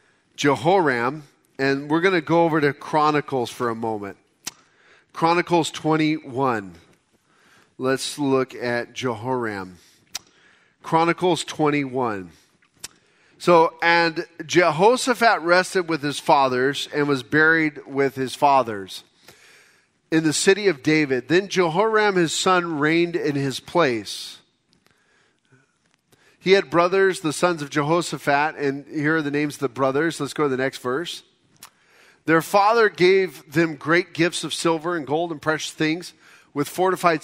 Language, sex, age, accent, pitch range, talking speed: English, male, 40-59, American, 135-170 Hz, 130 wpm